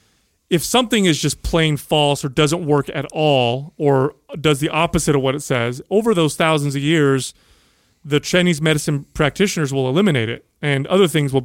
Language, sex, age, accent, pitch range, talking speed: English, male, 30-49, American, 135-160 Hz, 185 wpm